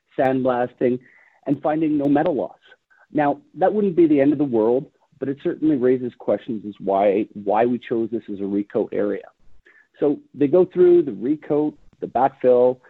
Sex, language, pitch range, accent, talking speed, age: male, English, 105-145 Hz, American, 175 wpm, 50-69